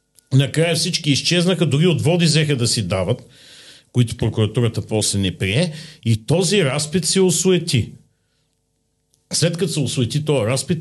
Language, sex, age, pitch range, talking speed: Bulgarian, male, 50-69, 115-160 Hz, 145 wpm